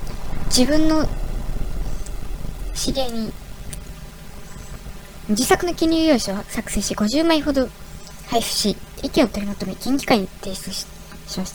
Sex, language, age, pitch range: male, Japanese, 20-39, 200-275 Hz